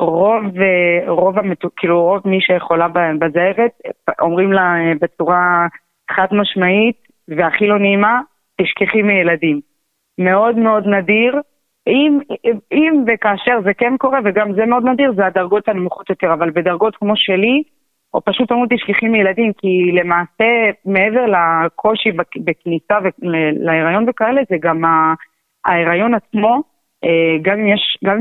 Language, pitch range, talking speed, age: Hebrew, 175-215 Hz, 115 wpm, 30-49